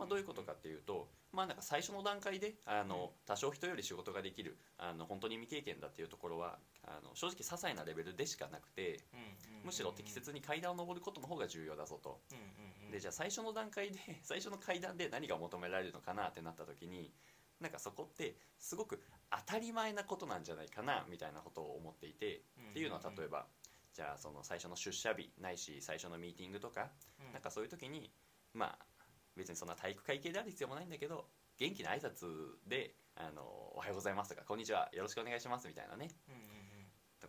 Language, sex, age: Japanese, male, 20-39